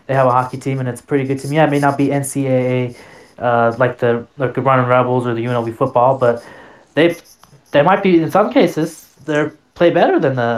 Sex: male